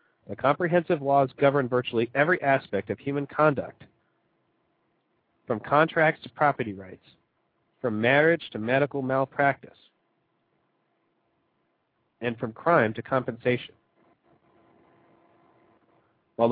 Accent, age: American, 40-59